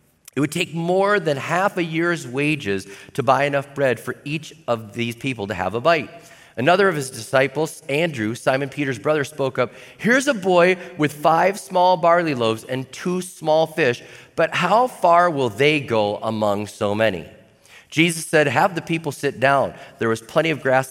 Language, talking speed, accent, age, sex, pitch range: English, 185 wpm, American, 40-59, male, 115-160 Hz